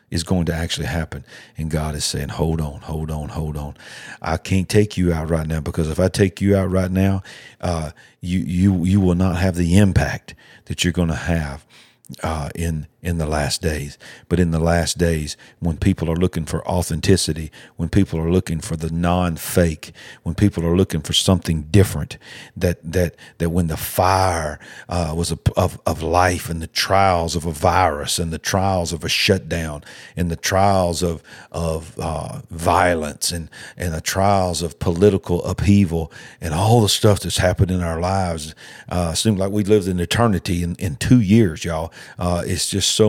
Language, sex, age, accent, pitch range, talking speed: English, male, 50-69, American, 85-100 Hz, 195 wpm